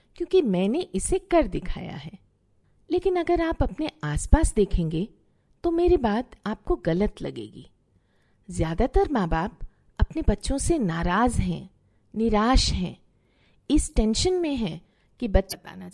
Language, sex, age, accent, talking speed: Hindi, female, 50-69, native, 130 wpm